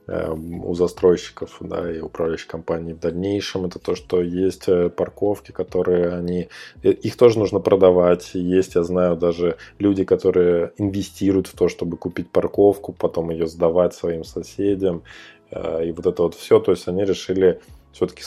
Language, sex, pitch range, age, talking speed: Russian, male, 85-95 Hz, 20-39, 150 wpm